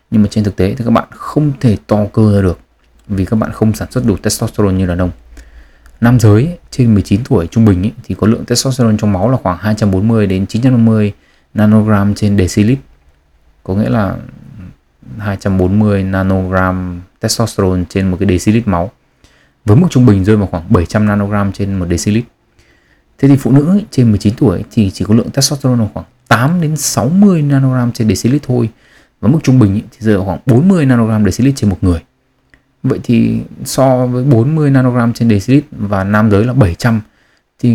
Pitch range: 95-120 Hz